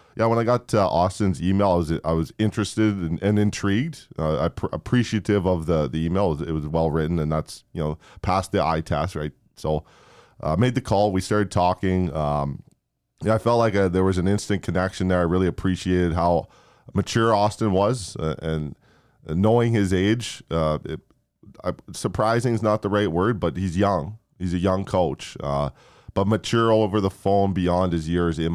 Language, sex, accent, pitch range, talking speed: English, male, American, 80-100 Hz, 185 wpm